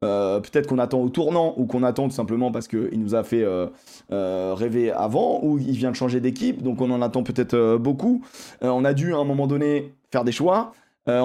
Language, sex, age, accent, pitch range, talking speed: French, male, 20-39, French, 115-145 Hz, 240 wpm